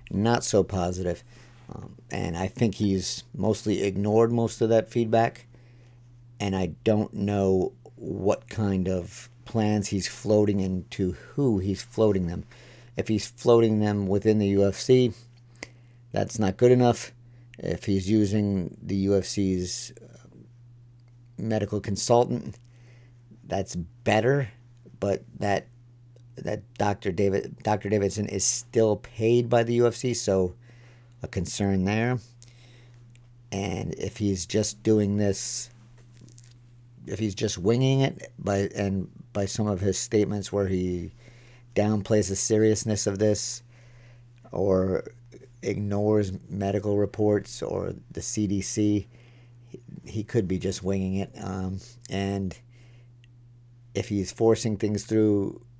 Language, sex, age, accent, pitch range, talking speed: English, male, 50-69, American, 100-120 Hz, 120 wpm